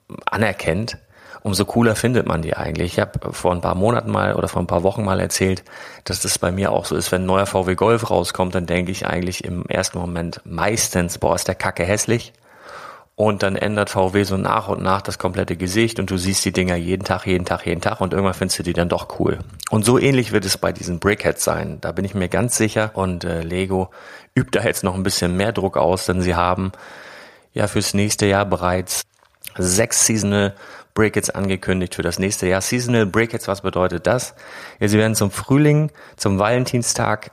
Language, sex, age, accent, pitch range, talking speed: German, male, 30-49, German, 90-105 Hz, 210 wpm